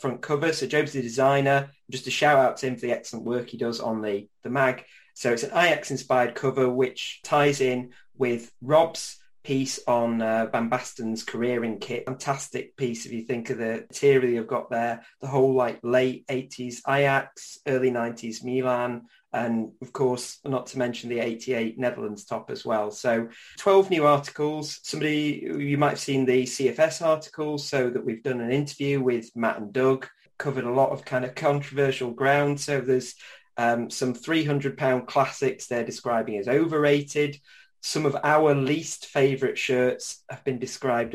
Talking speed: 180 wpm